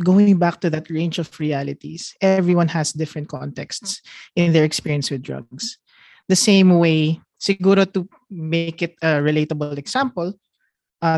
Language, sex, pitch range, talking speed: Filipino, male, 155-190 Hz, 140 wpm